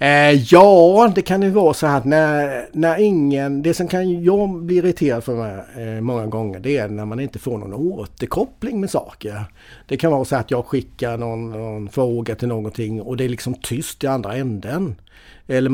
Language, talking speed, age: Swedish, 200 wpm, 50-69